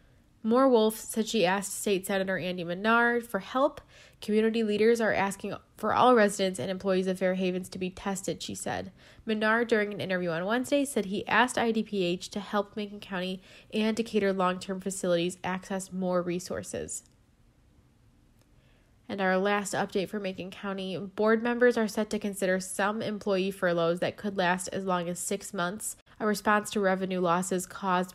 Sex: female